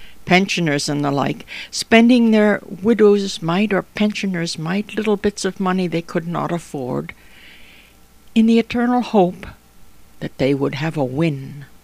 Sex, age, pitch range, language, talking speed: female, 60-79, 150-200 Hz, English, 145 wpm